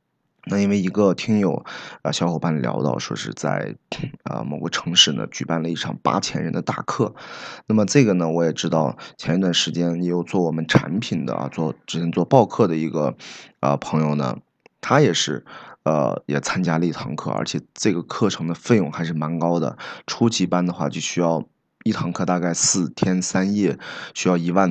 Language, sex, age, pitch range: Chinese, male, 20-39, 80-95 Hz